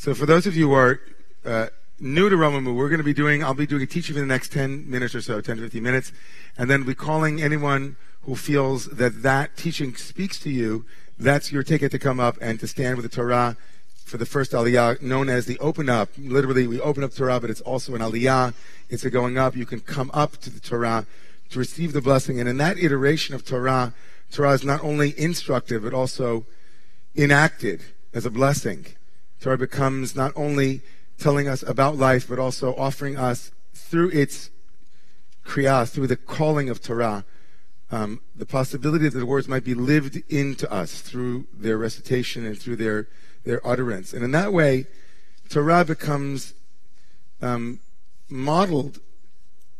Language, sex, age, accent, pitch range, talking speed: English, male, 40-59, American, 125-145 Hz, 185 wpm